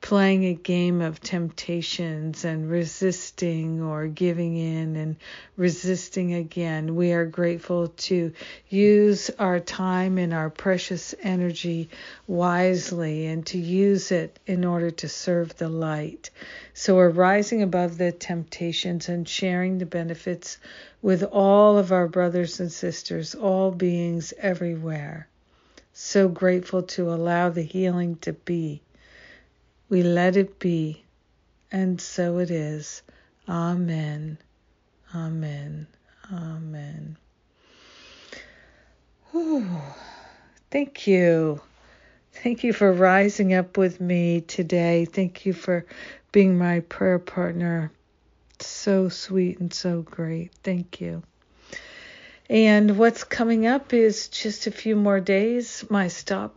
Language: English